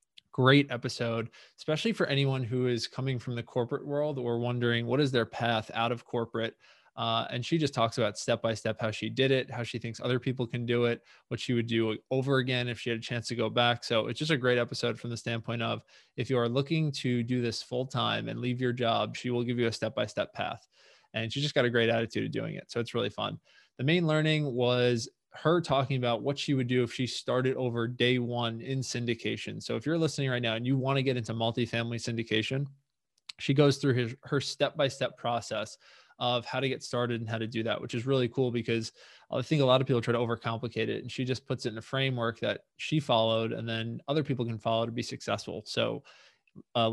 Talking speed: 235 wpm